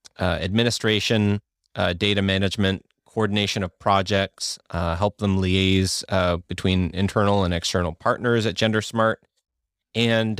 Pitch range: 95-115 Hz